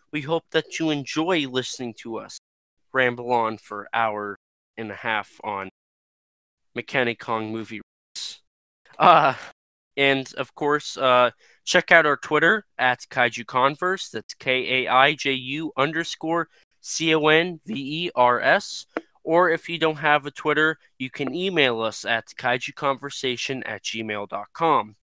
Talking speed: 120 wpm